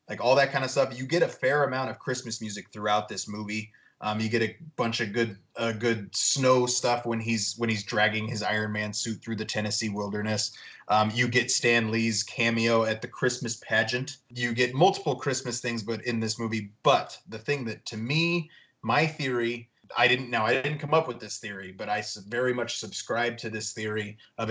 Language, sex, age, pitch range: English, male, 30-49, 105-120 Hz